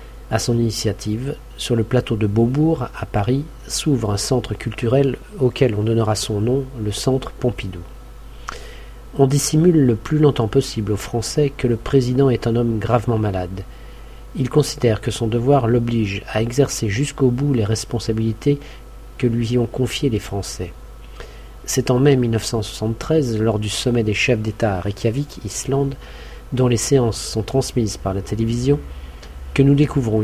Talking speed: 160 wpm